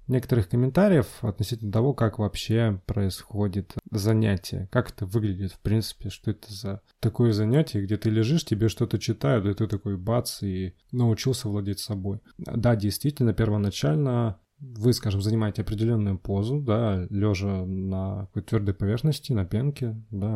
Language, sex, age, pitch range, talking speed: Russian, male, 20-39, 100-120 Hz, 145 wpm